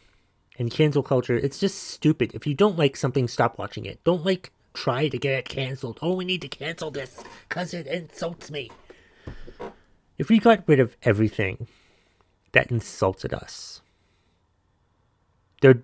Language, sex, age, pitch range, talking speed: English, male, 30-49, 95-140 Hz, 155 wpm